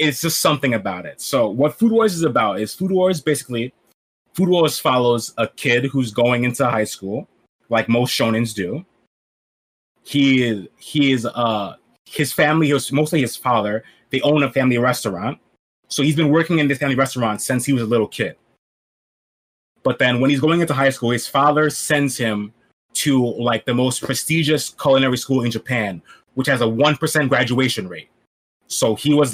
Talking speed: 180 wpm